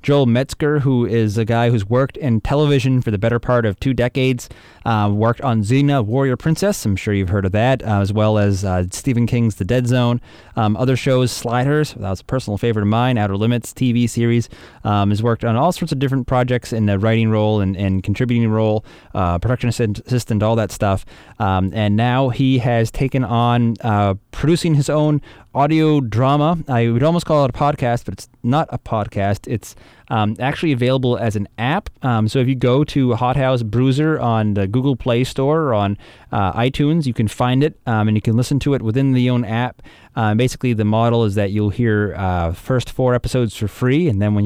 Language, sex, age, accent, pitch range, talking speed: English, male, 20-39, American, 105-130 Hz, 215 wpm